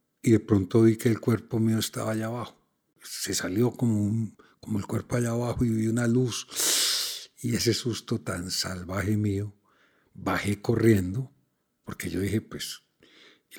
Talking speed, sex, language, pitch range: 165 wpm, male, Spanish, 100-120 Hz